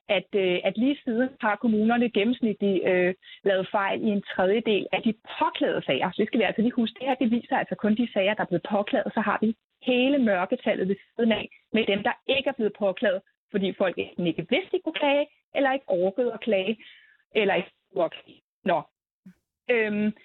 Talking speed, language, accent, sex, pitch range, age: 205 wpm, Danish, native, female, 205-270 Hz, 30-49